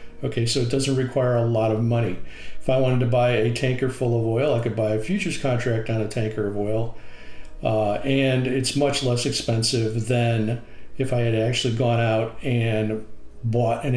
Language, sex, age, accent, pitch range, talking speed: English, male, 50-69, American, 110-130 Hz, 200 wpm